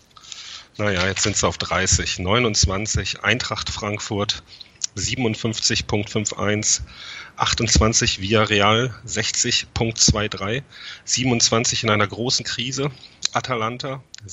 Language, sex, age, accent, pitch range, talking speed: German, male, 30-49, German, 100-120 Hz, 85 wpm